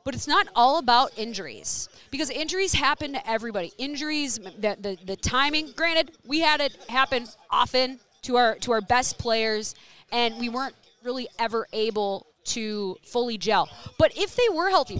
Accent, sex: American, female